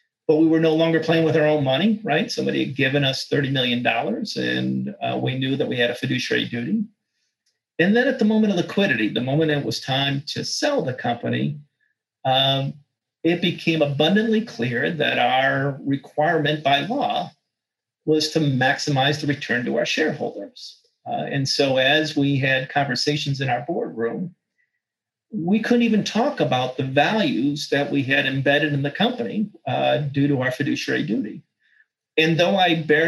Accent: American